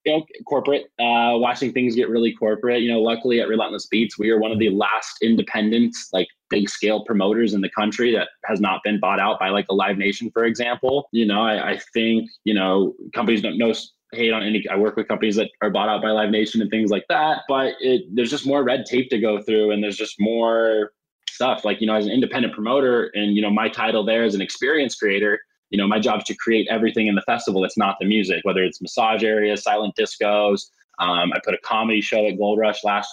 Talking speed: 240 wpm